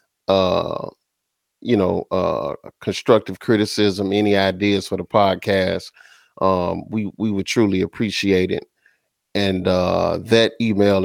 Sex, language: male, English